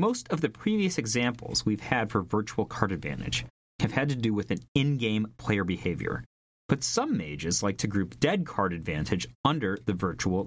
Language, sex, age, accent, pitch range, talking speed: English, male, 30-49, American, 95-135 Hz, 185 wpm